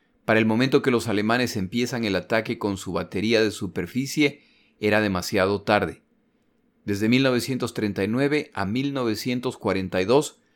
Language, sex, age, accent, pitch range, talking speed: Spanish, male, 40-59, Mexican, 105-130 Hz, 120 wpm